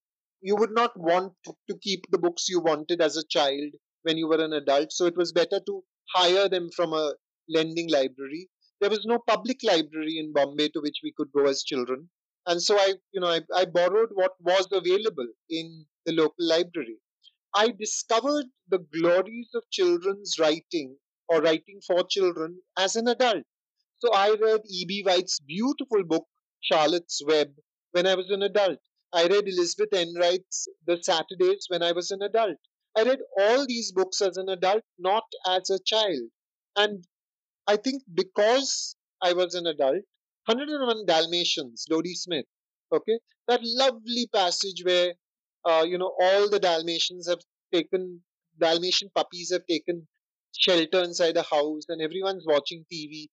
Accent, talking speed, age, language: Indian, 165 wpm, 30-49, English